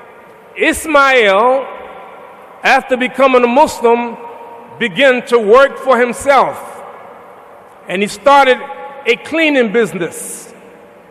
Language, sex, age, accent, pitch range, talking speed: English, male, 50-69, American, 245-295 Hz, 85 wpm